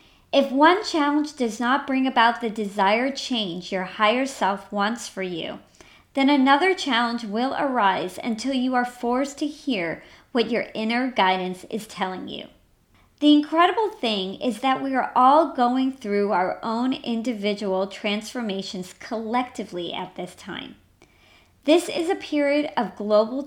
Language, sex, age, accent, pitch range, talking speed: English, male, 40-59, American, 210-280 Hz, 150 wpm